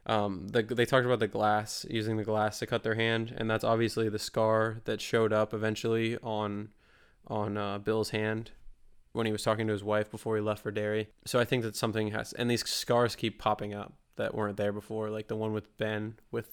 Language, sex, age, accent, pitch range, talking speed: English, male, 20-39, American, 105-115 Hz, 225 wpm